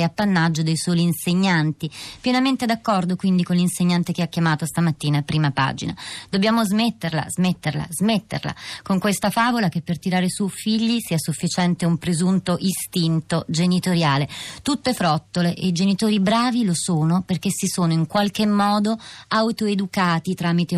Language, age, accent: Italian, 30-49, native